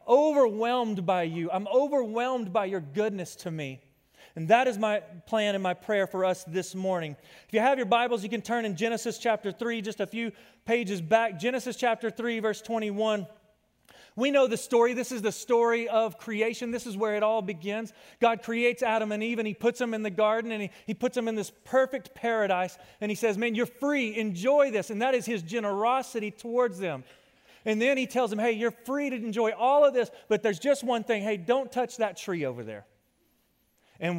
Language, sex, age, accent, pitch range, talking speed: English, male, 30-49, American, 190-240 Hz, 215 wpm